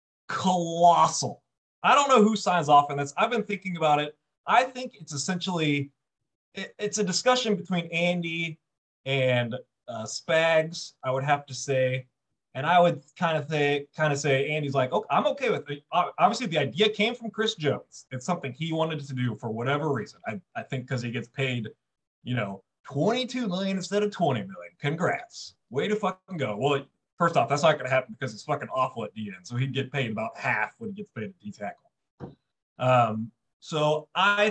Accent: American